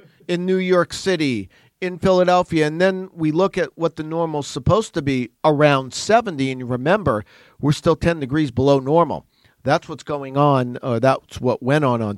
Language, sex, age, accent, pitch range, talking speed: English, male, 50-69, American, 135-175 Hz, 185 wpm